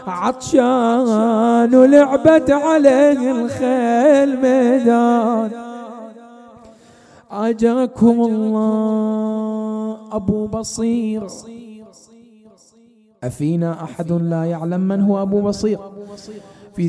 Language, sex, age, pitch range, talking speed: Arabic, male, 20-39, 165-220 Hz, 65 wpm